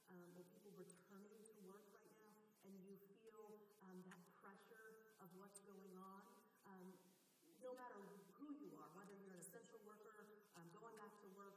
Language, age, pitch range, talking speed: English, 50-69, 180-220 Hz, 170 wpm